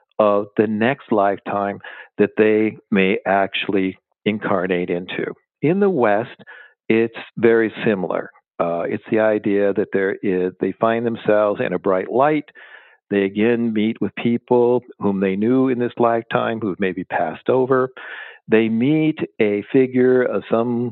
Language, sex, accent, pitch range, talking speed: English, male, American, 100-125 Hz, 145 wpm